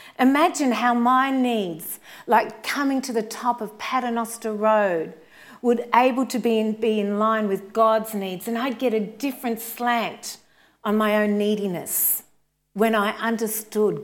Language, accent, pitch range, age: English, Australian, 180-235 Hz, 40-59